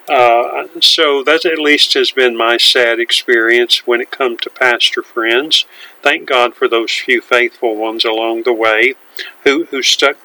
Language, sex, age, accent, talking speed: English, male, 50-69, American, 170 wpm